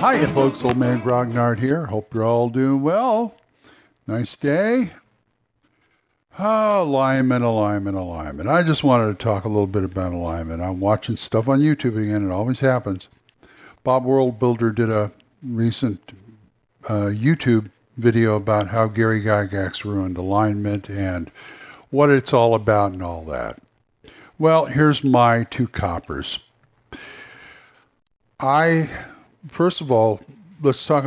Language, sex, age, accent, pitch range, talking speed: English, male, 60-79, American, 105-150 Hz, 135 wpm